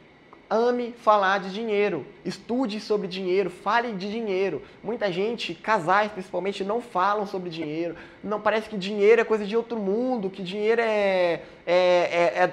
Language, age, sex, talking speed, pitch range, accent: Portuguese, 20-39, male, 150 wpm, 175-215 Hz, Brazilian